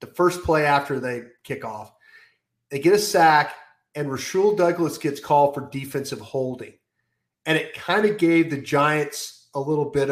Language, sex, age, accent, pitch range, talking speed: English, male, 30-49, American, 135-165 Hz, 170 wpm